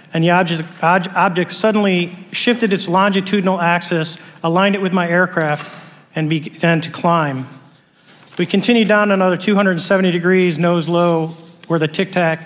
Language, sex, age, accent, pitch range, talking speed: English, male, 40-59, American, 155-185 Hz, 145 wpm